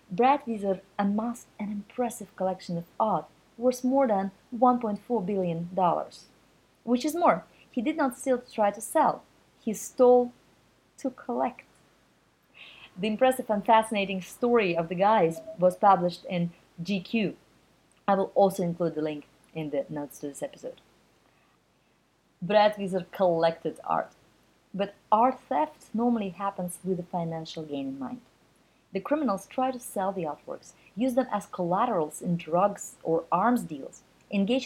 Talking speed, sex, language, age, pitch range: 145 wpm, female, English, 30-49, 180-240 Hz